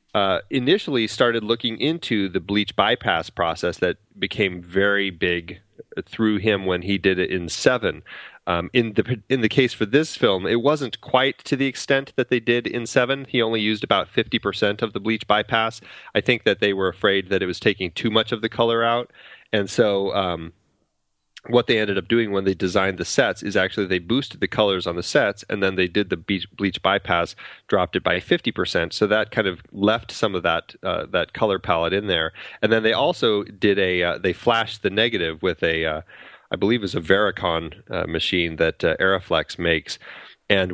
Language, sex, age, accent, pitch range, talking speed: English, male, 30-49, American, 90-115 Hz, 205 wpm